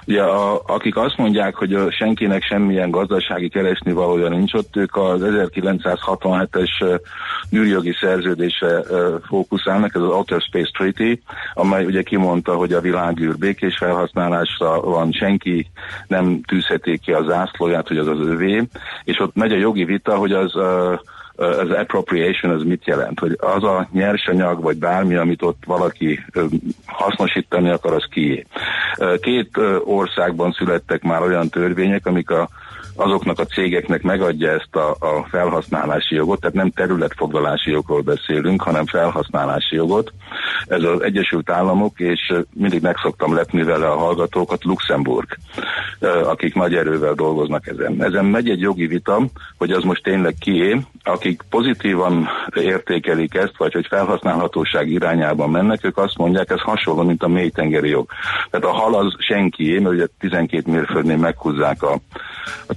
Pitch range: 85-95 Hz